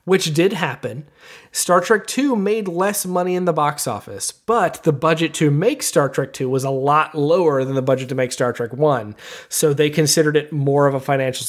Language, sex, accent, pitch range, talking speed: English, male, American, 145-200 Hz, 215 wpm